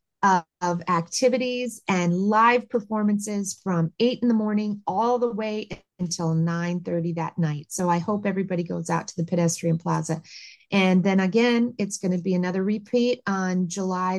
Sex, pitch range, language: female, 180-220 Hz, English